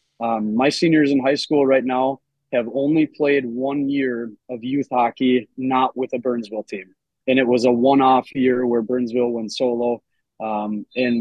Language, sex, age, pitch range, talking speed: English, male, 20-39, 120-135 Hz, 175 wpm